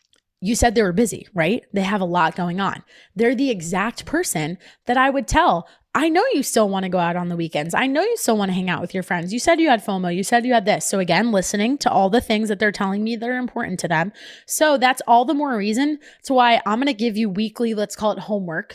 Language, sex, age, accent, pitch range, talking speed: English, female, 20-39, American, 190-235 Hz, 275 wpm